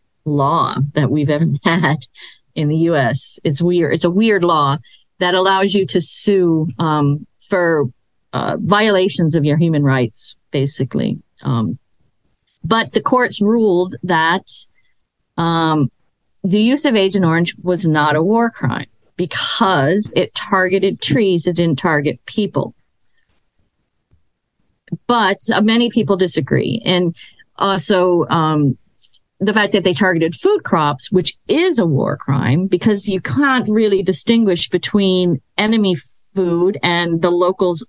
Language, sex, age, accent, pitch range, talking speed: English, female, 40-59, American, 150-200 Hz, 135 wpm